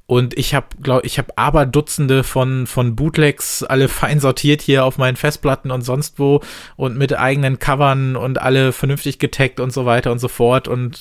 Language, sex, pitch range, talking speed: German, male, 120-140 Hz, 185 wpm